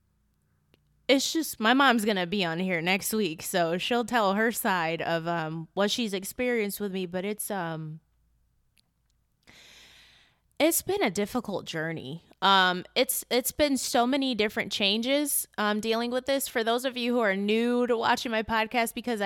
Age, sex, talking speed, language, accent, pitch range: 20-39, female, 170 wpm, English, American, 170-225 Hz